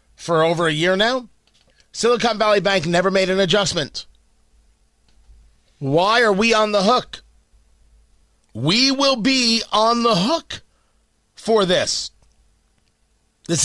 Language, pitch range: English, 120-200 Hz